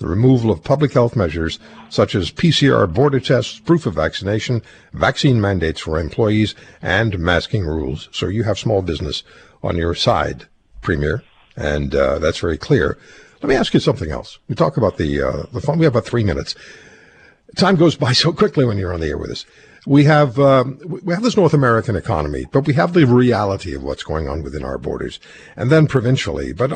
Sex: male